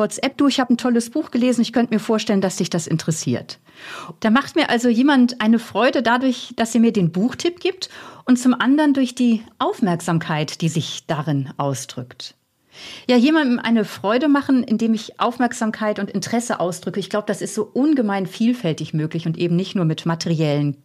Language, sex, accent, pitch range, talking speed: German, female, German, 170-235 Hz, 185 wpm